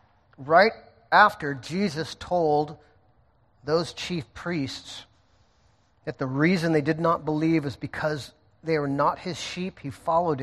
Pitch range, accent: 105-150 Hz, American